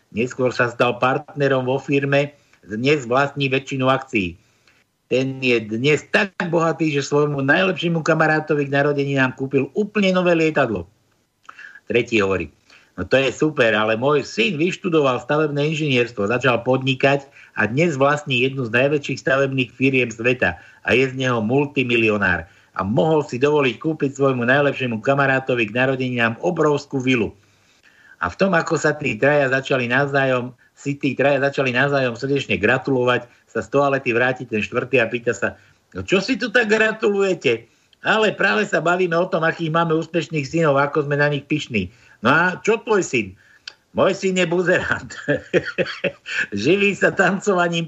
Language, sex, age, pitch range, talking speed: Slovak, male, 60-79, 125-160 Hz, 155 wpm